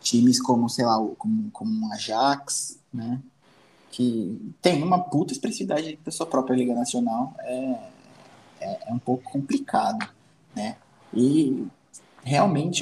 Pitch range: 120-185 Hz